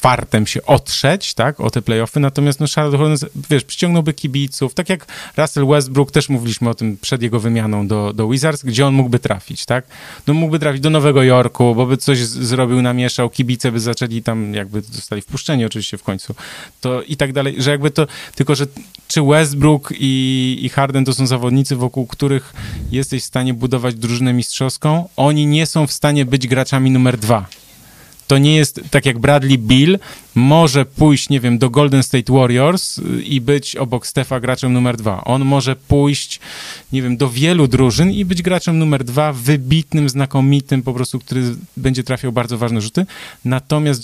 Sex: male